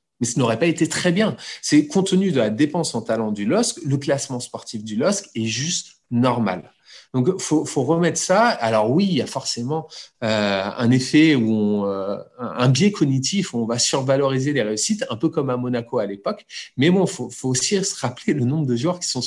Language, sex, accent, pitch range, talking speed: French, male, French, 120-175 Hz, 225 wpm